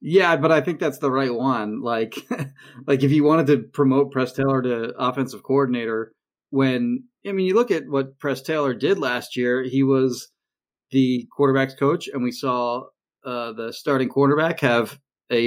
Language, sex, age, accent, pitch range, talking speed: English, male, 30-49, American, 130-155 Hz, 180 wpm